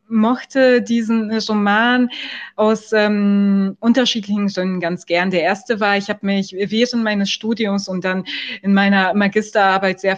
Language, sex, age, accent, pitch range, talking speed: German, female, 20-39, German, 175-215 Hz, 140 wpm